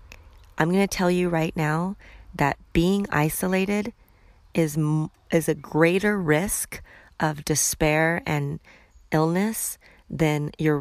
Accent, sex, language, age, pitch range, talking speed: American, female, English, 30-49, 140-170 Hz, 115 wpm